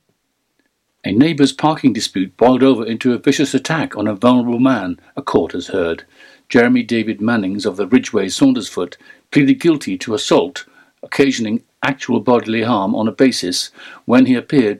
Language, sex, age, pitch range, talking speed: English, male, 60-79, 110-170 Hz, 160 wpm